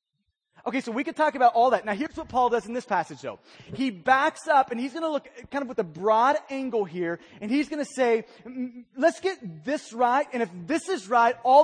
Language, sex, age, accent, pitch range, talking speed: English, male, 30-49, American, 215-280 Hz, 240 wpm